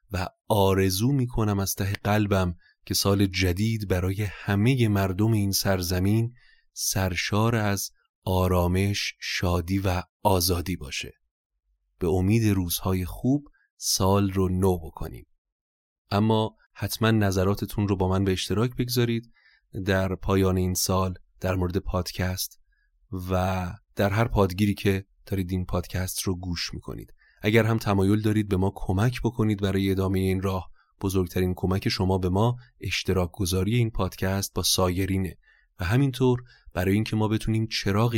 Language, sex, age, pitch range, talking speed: Persian, male, 30-49, 95-110 Hz, 135 wpm